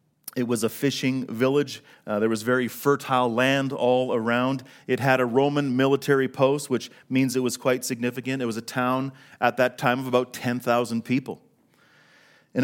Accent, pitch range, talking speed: American, 115-140 Hz, 175 wpm